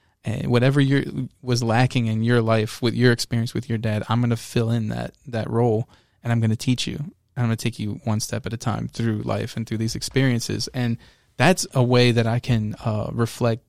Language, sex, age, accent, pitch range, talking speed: English, male, 20-39, American, 110-125 Hz, 230 wpm